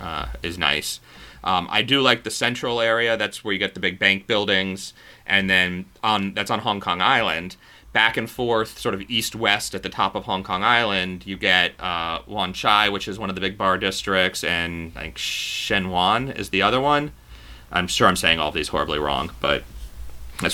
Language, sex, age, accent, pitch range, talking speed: English, male, 30-49, American, 95-120 Hz, 210 wpm